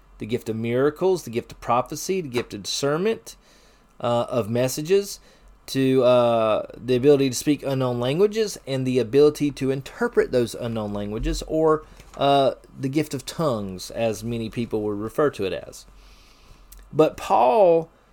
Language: English